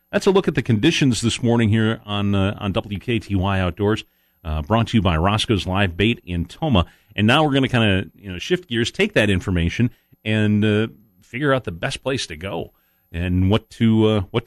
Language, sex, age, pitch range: English, male, 40-59, 80-110 Hz